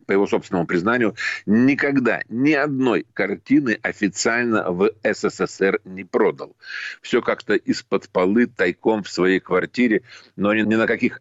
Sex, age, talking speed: male, 40-59, 140 wpm